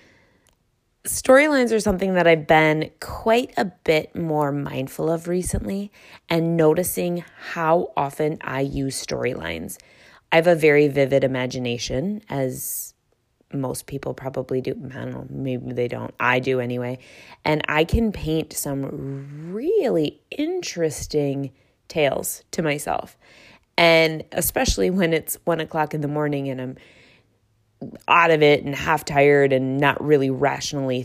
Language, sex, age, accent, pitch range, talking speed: English, female, 20-39, American, 135-160 Hz, 135 wpm